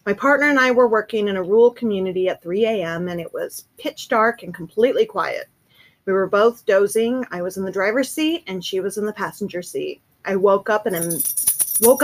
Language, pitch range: English, 190-275 Hz